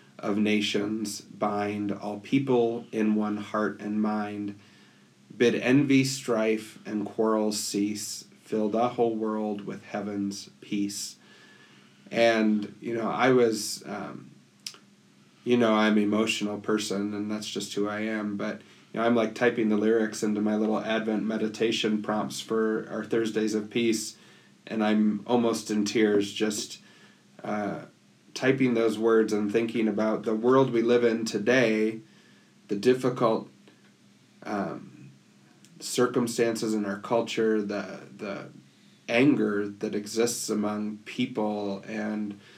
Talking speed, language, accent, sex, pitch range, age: 130 wpm, English, American, male, 105-115 Hz, 30-49